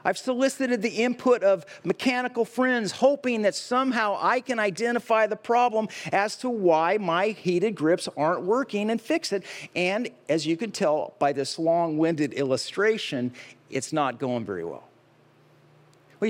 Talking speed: 150 wpm